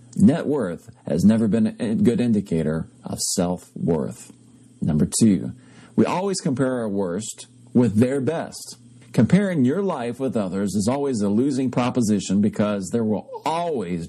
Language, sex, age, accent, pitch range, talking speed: English, male, 40-59, American, 95-130 Hz, 145 wpm